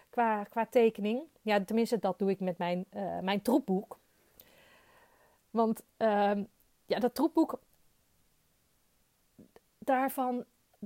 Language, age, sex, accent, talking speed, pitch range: Dutch, 30-49, female, Dutch, 105 wpm, 230-290 Hz